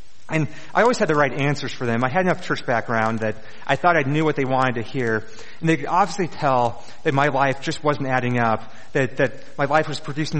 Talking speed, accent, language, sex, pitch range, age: 240 wpm, American, English, male, 125-155 Hz, 30-49